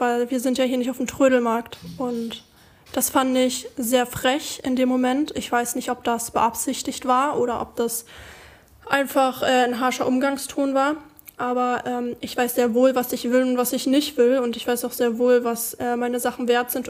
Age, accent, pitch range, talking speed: 20-39, German, 240-260 Hz, 215 wpm